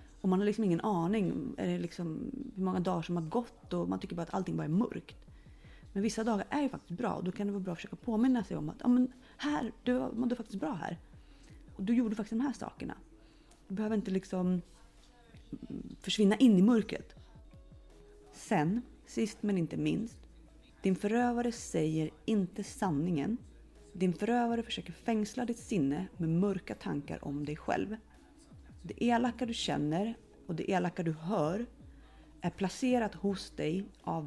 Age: 30-49